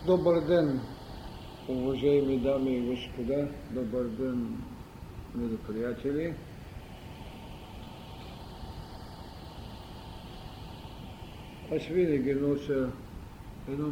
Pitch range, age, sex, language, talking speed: 120-150 Hz, 50-69, male, Bulgarian, 55 wpm